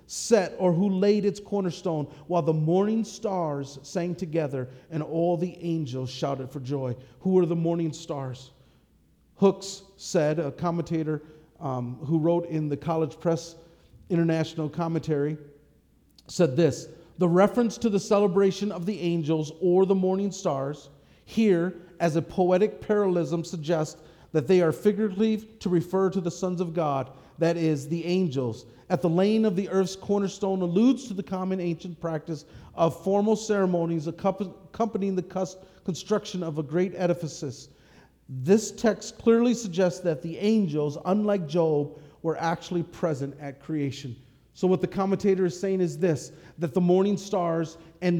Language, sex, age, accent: English, male, 40-59, American